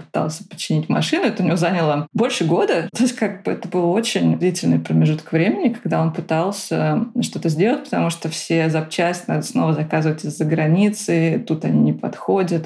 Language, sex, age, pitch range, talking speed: Russian, female, 20-39, 165-205 Hz, 170 wpm